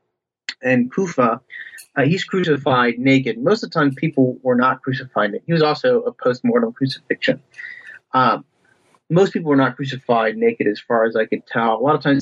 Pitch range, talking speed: 120-155 Hz, 180 wpm